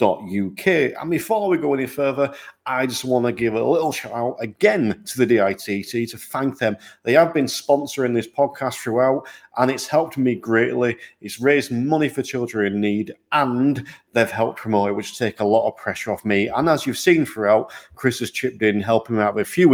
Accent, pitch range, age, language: British, 105-135 Hz, 40-59, English